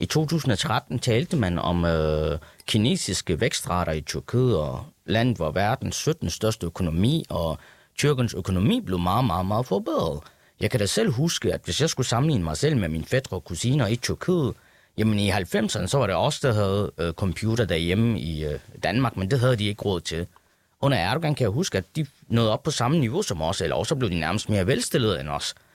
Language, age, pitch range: Danish, 30-49, 90-130 Hz